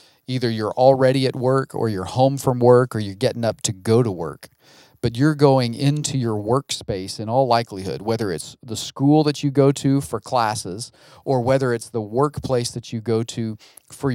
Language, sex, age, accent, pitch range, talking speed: English, male, 40-59, American, 115-135 Hz, 200 wpm